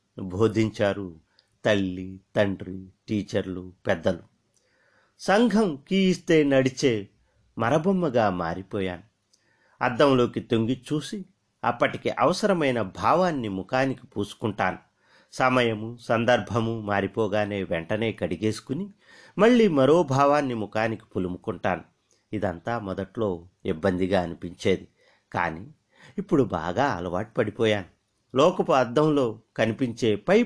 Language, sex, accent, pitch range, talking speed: Telugu, male, native, 100-135 Hz, 85 wpm